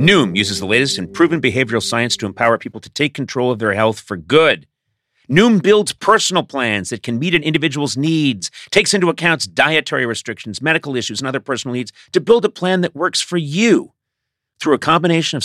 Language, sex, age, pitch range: English, male, 40-59, 105-150 Hz